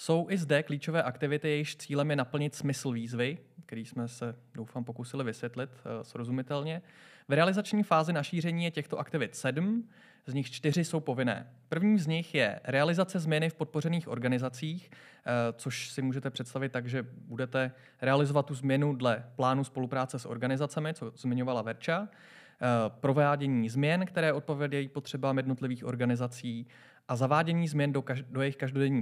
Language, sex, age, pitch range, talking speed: Czech, male, 20-39, 125-160 Hz, 150 wpm